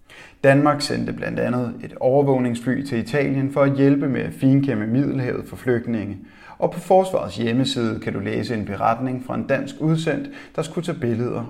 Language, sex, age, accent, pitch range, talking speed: Danish, male, 30-49, native, 110-140 Hz, 180 wpm